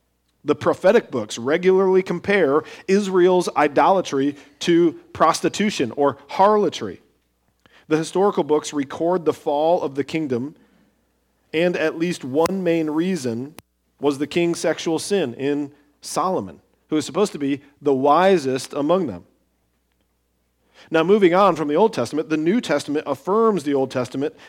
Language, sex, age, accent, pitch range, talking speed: English, male, 40-59, American, 140-190 Hz, 135 wpm